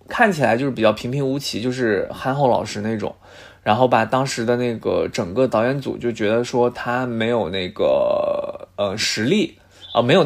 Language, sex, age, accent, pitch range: Chinese, male, 20-39, native, 115-140 Hz